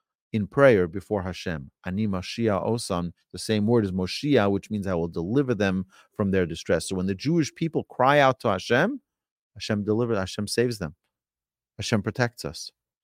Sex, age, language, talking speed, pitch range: male, 40-59, English, 160 wpm, 100-135 Hz